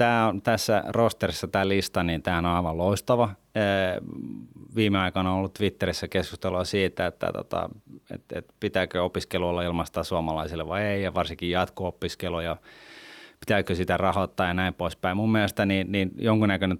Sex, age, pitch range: male, 30-49, 85-100 Hz